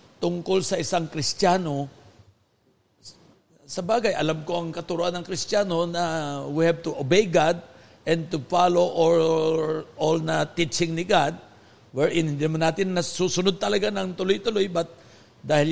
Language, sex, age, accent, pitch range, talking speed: Filipino, male, 50-69, native, 155-195 Hz, 140 wpm